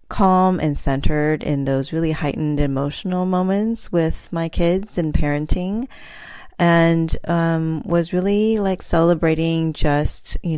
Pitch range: 145-180 Hz